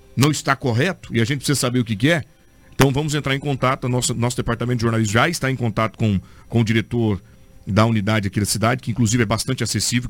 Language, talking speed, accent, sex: Portuguese, 240 wpm, Brazilian, male